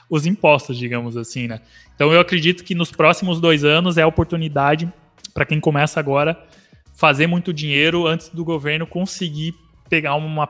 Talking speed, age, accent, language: 165 wpm, 20-39, Brazilian, Portuguese